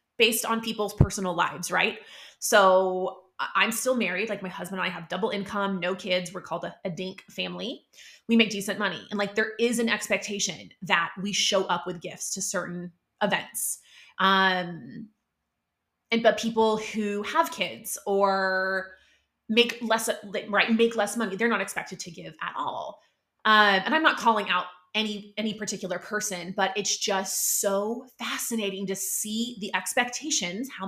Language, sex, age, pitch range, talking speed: English, female, 20-39, 185-225 Hz, 165 wpm